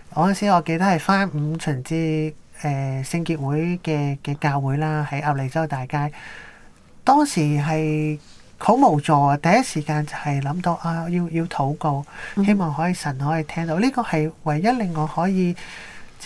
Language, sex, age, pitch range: Chinese, male, 30-49, 145-180 Hz